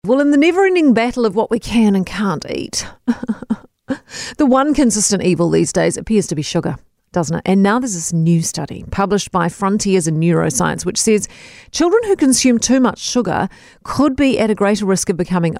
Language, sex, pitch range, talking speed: English, female, 180-255 Hz, 200 wpm